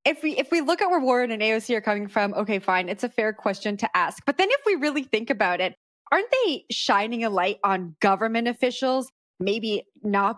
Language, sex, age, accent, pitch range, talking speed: English, female, 20-39, American, 205-265 Hz, 225 wpm